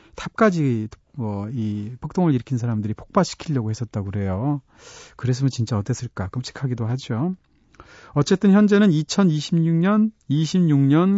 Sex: male